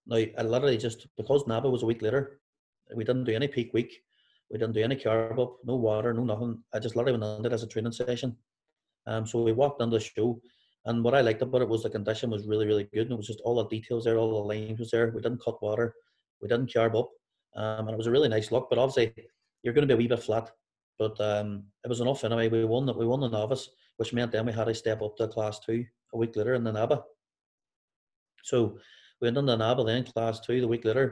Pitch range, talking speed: 110-125 Hz, 260 wpm